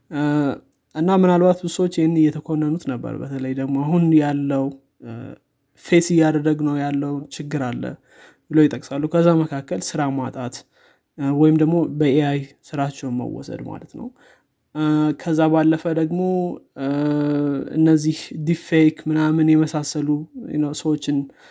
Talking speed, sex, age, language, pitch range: 110 wpm, male, 20-39, Amharic, 140-160 Hz